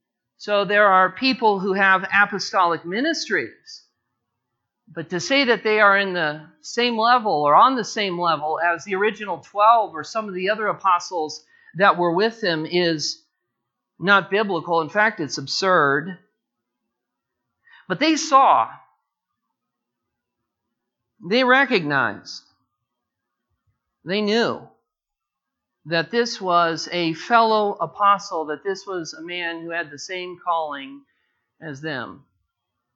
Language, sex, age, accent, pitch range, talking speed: English, male, 50-69, American, 165-215 Hz, 125 wpm